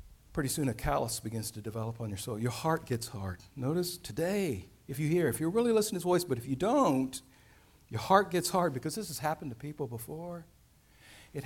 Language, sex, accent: English, male, American